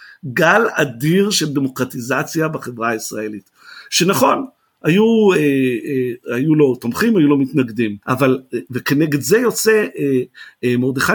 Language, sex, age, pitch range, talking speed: Hebrew, male, 50-69, 130-210 Hz, 100 wpm